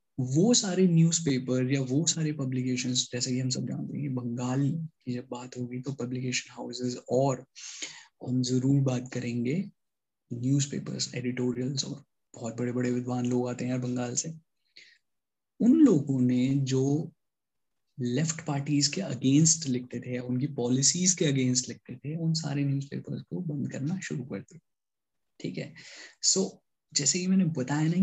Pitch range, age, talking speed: 125-160 Hz, 20-39, 155 wpm